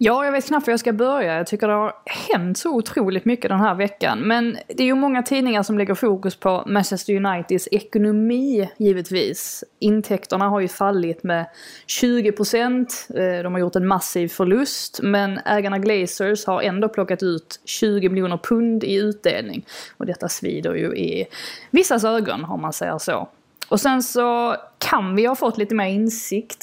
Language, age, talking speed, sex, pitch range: Swedish, 20-39, 175 wpm, female, 180-225 Hz